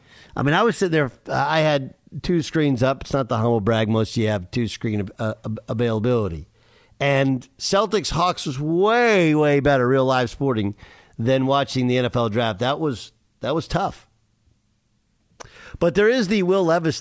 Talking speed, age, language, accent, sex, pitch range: 175 wpm, 50-69, English, American, male, 115-145 Hz